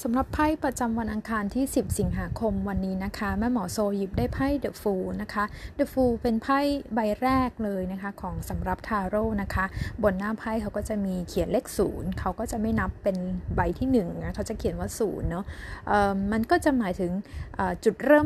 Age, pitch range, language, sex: 20-39, 205-260 Hz, Thai, female